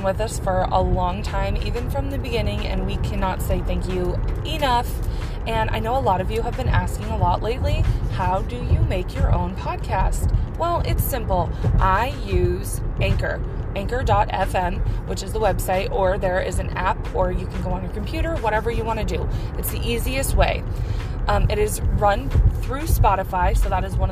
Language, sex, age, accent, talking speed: English, female, 20-39, American, 200 wpm